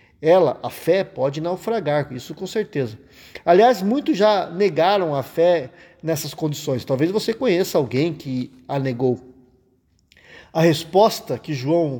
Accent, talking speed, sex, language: Brazilian, 135 wpm, male, Portuguese